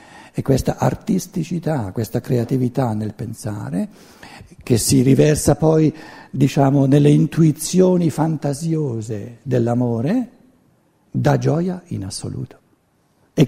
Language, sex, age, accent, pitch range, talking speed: Italian, male, 60-79, native, 120-165 Hz, 95 wpm